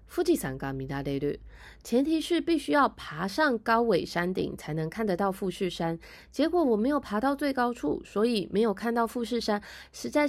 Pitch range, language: 160-235 Hz, Japanese